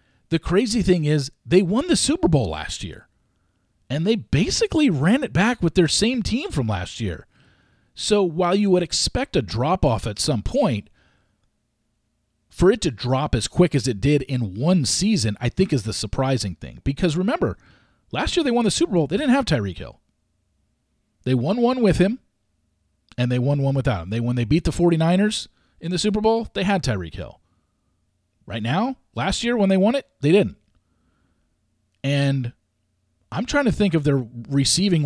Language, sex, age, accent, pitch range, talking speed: English, male, 40-59, American, 110-180 Hz, 190 wpm